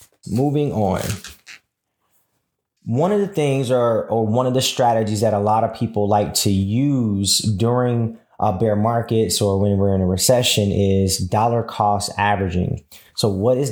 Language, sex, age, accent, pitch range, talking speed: English, male, 20-39, American, 105-125 Hz, 160 wpm